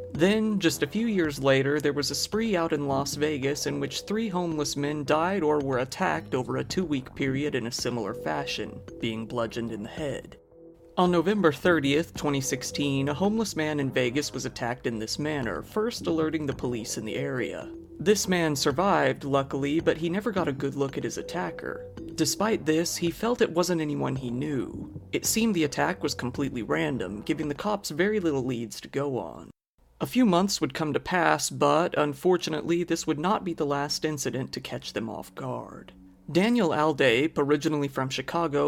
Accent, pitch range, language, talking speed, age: American, 135-170 Hz, English, 190 wpm, 30-49